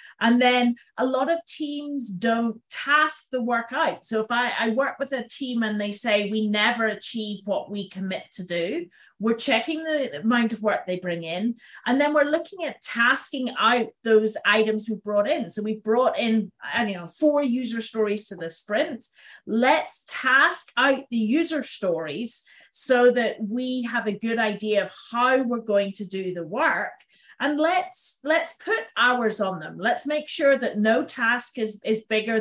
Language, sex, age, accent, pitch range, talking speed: English, female, 40-59, British, 215-275 Hz, 180 wpm